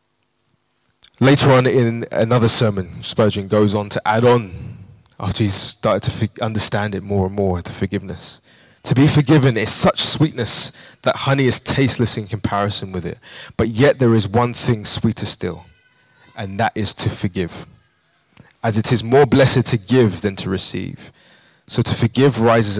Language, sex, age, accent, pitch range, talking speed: English, male, 20-39, British, 100-125 Hz, 165 wpm